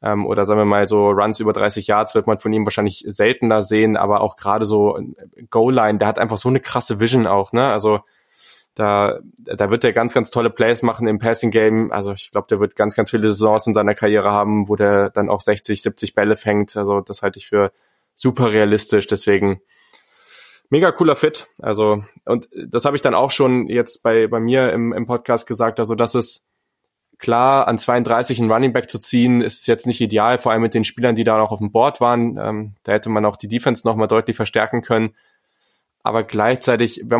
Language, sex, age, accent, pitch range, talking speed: German, male, 20-39, German, 105-120 Hz, 210 wpm